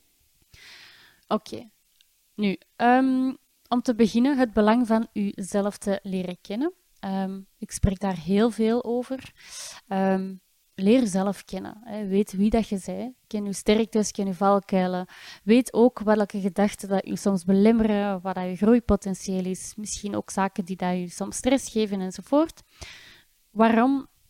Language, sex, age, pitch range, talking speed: Dutch, female, 20-39, 195-225 Hz, 145 wpm